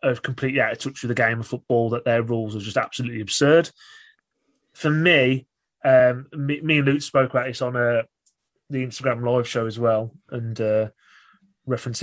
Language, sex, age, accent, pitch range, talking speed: English, male, 30-49, British, 120-145 Hz, 195 wpm